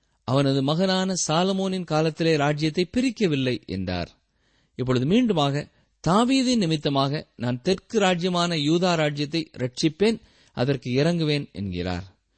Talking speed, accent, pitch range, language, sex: 95 wpm, native, 125-200 Hz, Tamil, male